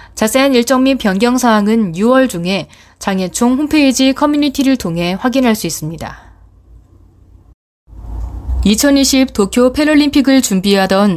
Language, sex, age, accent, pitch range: Korean, female, 20-39, native, 175-255 Hz